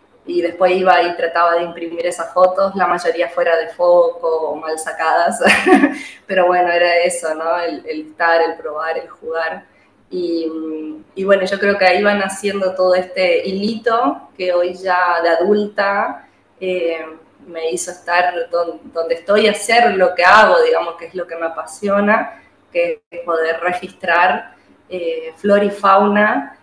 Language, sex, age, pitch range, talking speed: English, female, 20-39, 175-205 Hz, 160 wpm